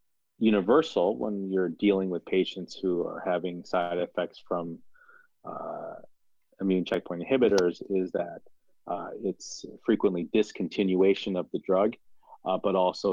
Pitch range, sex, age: 85-100 Hz, male, 30-49